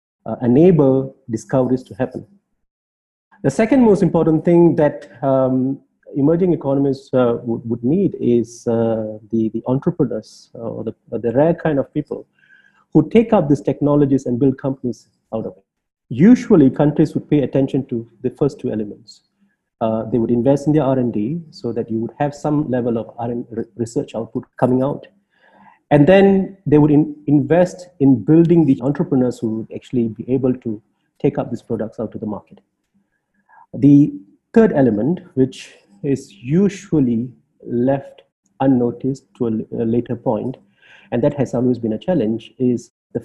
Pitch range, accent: 120-155 Hz, Indian